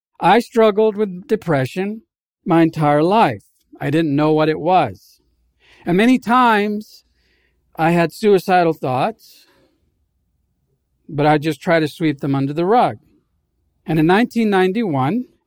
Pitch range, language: 145-205 Hz, English